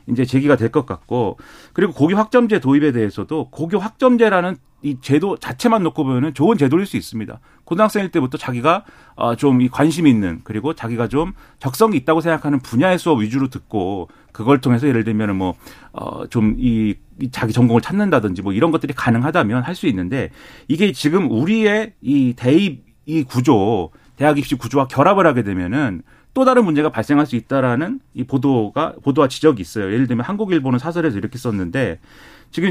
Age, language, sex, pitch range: 40-59, Korean, male, 120-160 Hz